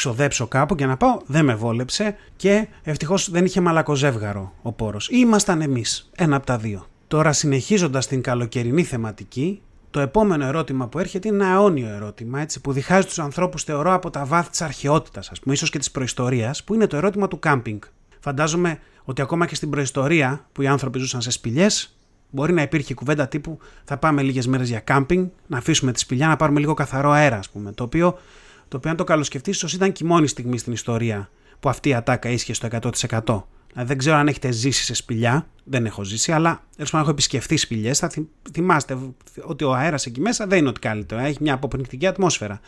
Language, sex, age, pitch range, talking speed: Greek, male, 30-49, 125-180 Hz, 200 wpm